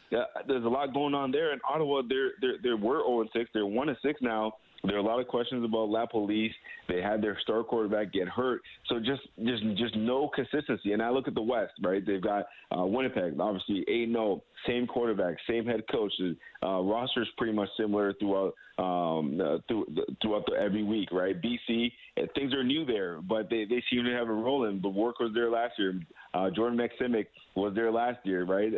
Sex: male